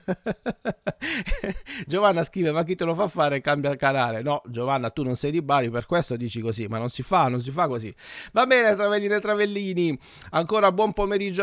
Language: Italian